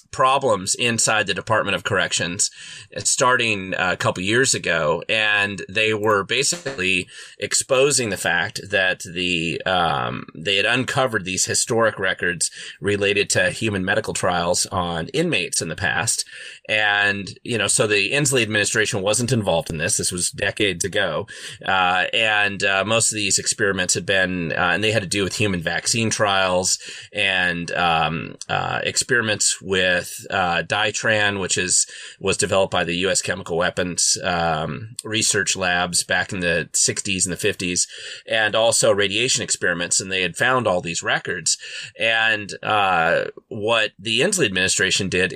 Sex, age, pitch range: male, 30-49, 90-110 Hz